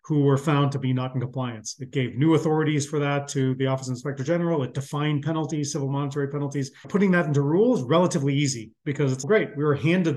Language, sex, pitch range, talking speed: English, male, 130-155 Hz, 225 wpm